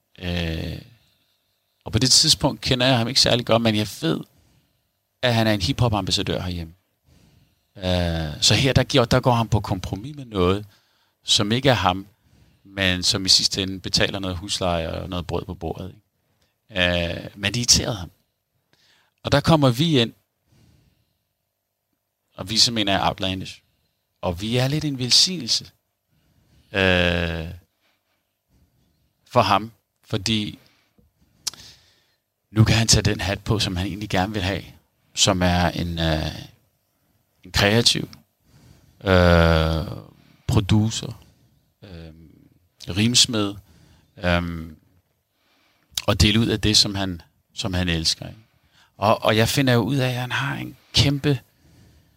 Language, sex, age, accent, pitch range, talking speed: Danish, male, 40-59, native, 90-115 Hz, 130 wpm